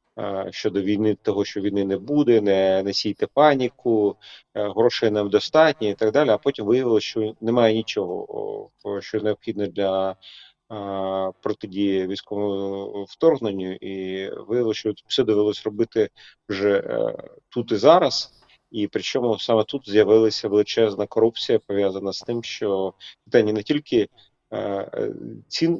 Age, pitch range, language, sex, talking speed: 30-49, 100-115 Hz, Ukrainian, male, 120 wpm